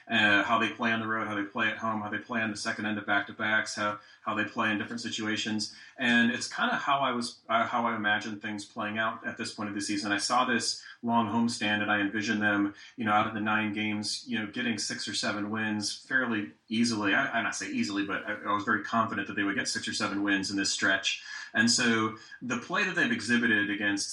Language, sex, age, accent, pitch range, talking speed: English, male, 30-49, American, 100-120 Hz, 260 wpm